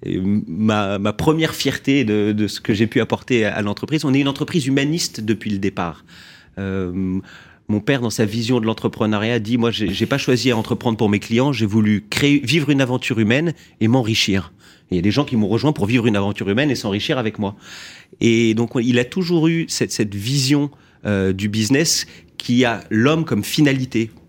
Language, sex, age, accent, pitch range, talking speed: French, male, 30-49, French, 100-130 Hz, 215 wpm